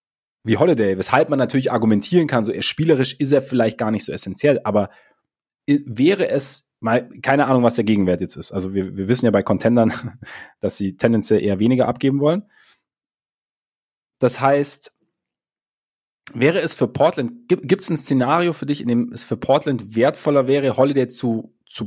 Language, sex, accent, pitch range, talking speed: German, male, German, 110-140 Hz, 175 wpm